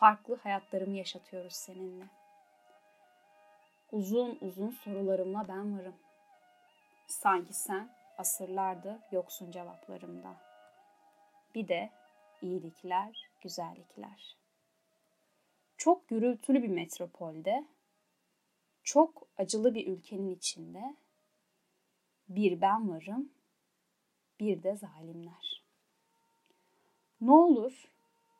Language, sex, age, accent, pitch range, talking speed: Turkish, female, 10-29, native, 185-255 Hz, 75 wpm